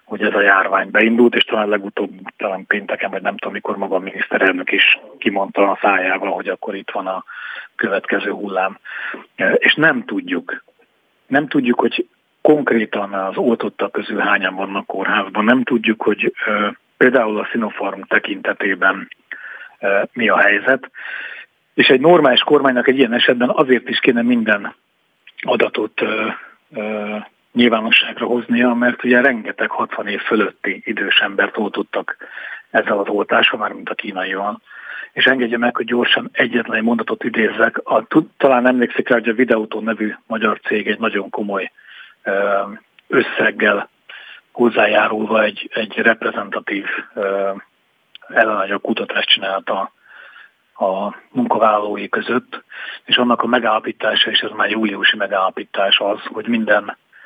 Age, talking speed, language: 40-59, 130 wpm, Hungarian